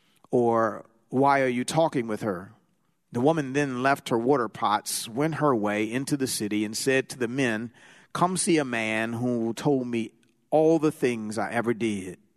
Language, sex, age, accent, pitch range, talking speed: English, male, 40-59, American, 110-125 Hz, 185 wpm